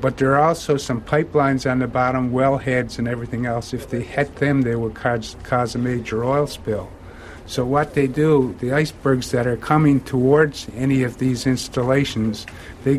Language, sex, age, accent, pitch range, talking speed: English, male, 50-69, American, 115-135 Hz, 185 wpm